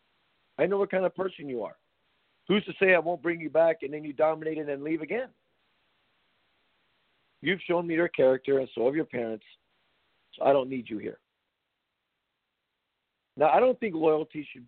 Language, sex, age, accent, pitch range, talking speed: English, male, 50-69, American, 125-155 Hz, 190 wpm